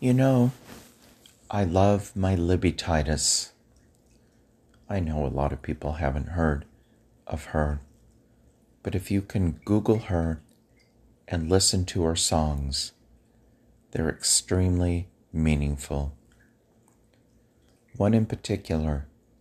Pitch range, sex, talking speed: 75-100 Hz, male, 105 wpm